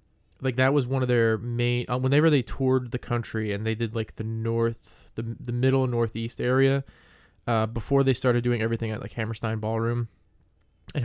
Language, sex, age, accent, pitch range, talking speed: English, male, 20-39, American, 105-125 Hz, 185 wpm